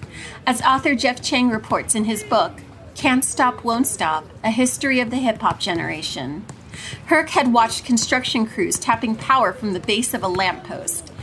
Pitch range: 215-270 Hz